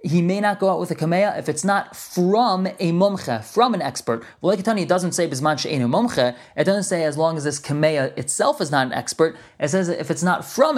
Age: 30-49